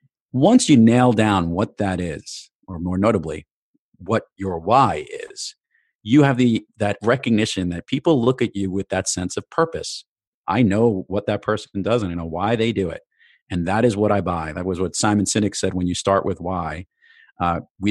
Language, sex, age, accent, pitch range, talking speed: English, male, 40-59, American, 95-115 Hz, 205 wpm